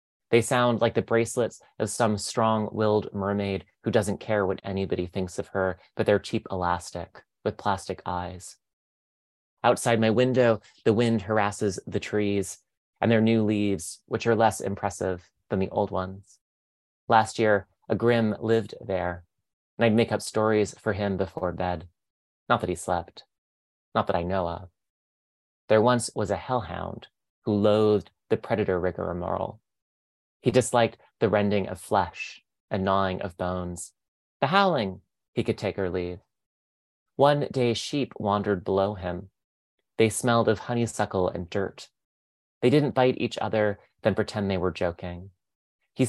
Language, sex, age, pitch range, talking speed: English, male, 30-49, 90-110 Hz, 155 wpm